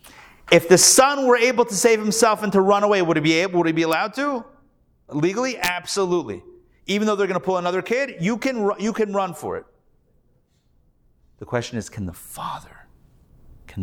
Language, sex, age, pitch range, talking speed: English, male, 40-59, 110-160 Hz, 195 wpm